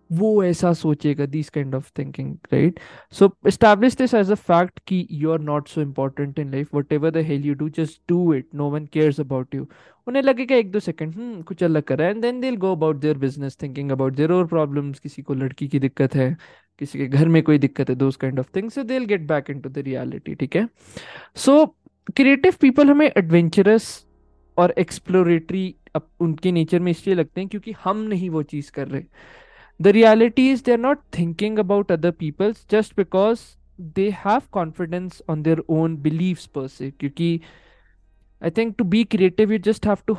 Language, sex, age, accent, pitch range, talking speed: Hindi, male, 20-39, native, 150-205 Hz, 190 wpm